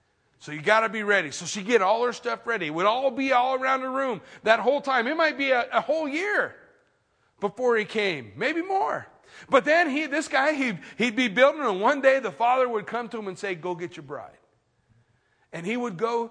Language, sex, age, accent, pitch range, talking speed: English, male, 40-59, American, 170-240 Hz, 235 wpm